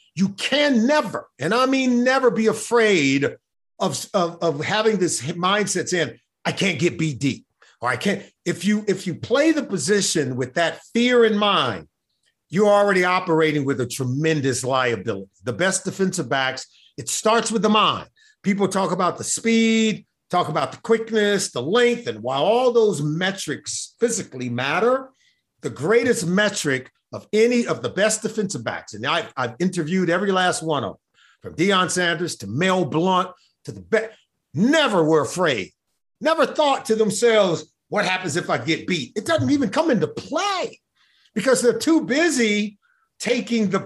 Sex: male